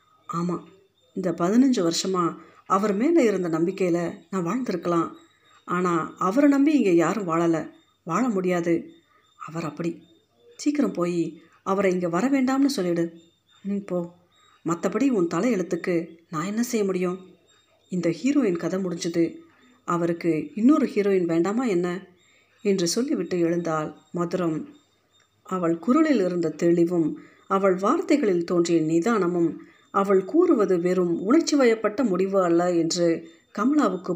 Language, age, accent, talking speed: Tamil, 50-69, native, 110 wpm